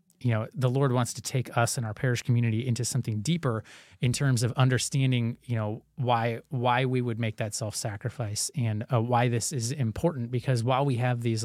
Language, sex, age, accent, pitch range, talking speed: English, male, 30-49, American, 115-130 Hz, 205 wpm